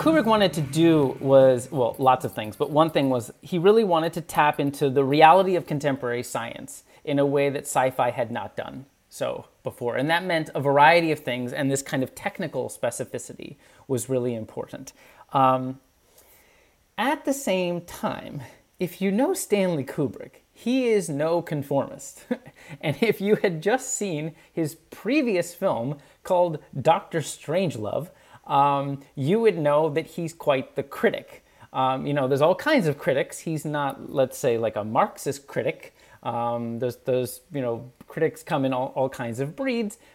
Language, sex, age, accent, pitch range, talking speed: English, male, 30-49, American, 135-185 Hz, 170 wpm